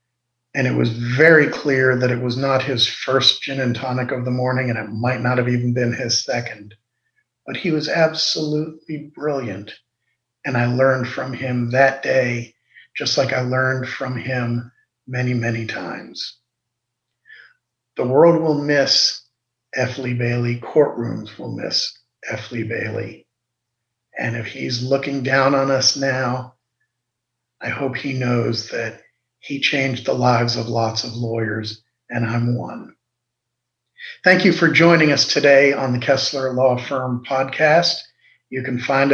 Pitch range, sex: 120-140 Hz, male